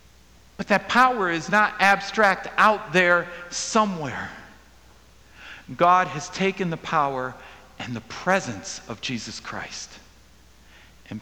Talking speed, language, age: 110 wpm, English, 50-69